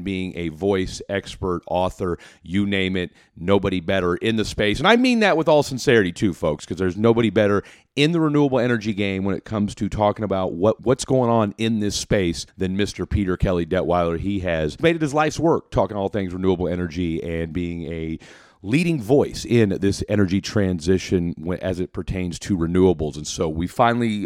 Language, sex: English, male